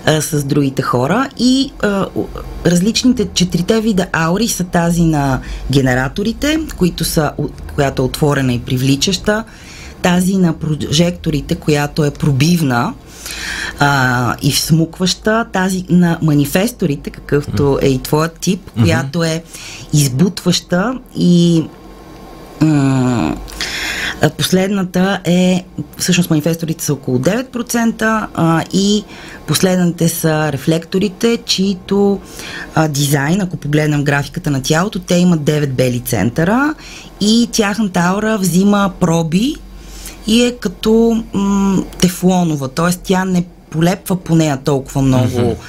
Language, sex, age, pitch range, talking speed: Bulgarian, female, 30-49, 145-190 Hz, 110 wpm